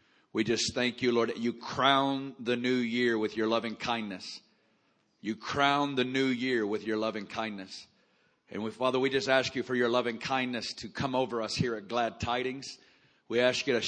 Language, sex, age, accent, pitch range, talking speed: English, male, 40-59, American, 120-135 Hz, 205 wpm